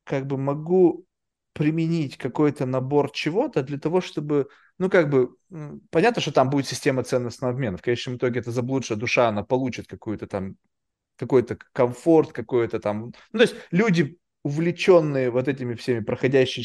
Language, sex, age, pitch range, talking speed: Russian, male, 20-39, 125-165 Hz, 155 wpm